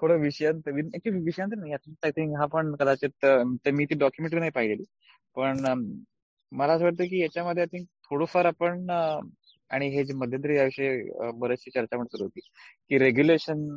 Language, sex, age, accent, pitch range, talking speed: Marathi, male, 20-39, native, 125-150 Hz, 135 wpm